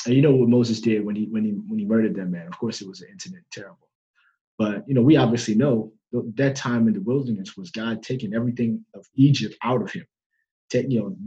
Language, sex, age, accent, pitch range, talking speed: English, male, 20-39, American, 115-155 Hz, 235 wpm